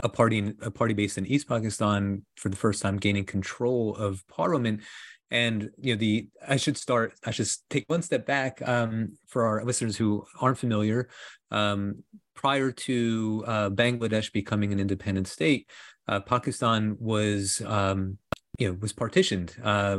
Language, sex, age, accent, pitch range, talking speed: English, male, 30-49, American, 100-115 Hz, 160 wpm